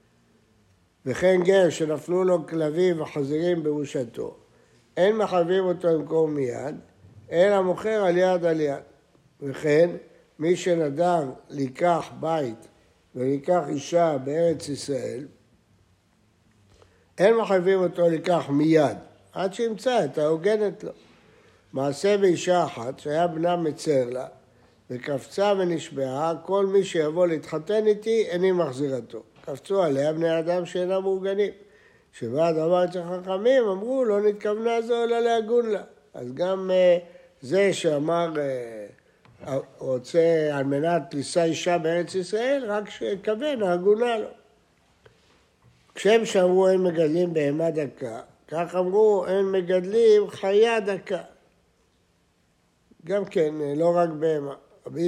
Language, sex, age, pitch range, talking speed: Hebrew, male, 60-79, 145-190 Hz, 115 wpm